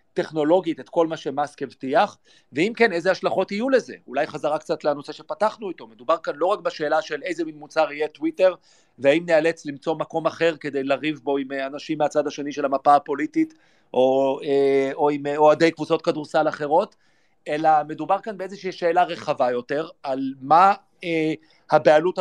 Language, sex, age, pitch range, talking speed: Hebrew, male, 40-59, 140-170 Hz, 170 wpm